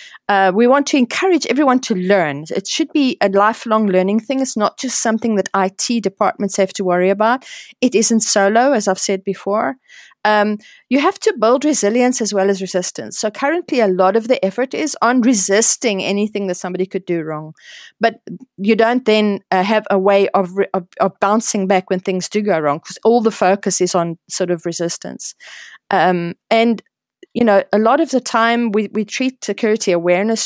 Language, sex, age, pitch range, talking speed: English, female, 30-49, 195-240 Hz, 195 wpm